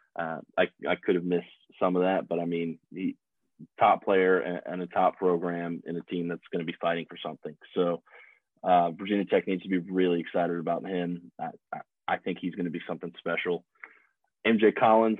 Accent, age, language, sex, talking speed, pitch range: American, 30-49, English, male, 205 wpm, 85-95 Hz